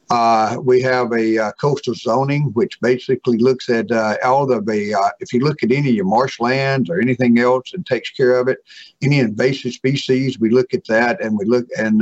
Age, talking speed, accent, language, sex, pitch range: 50-69, 215 wpm, American, English, male, 115-130 Hz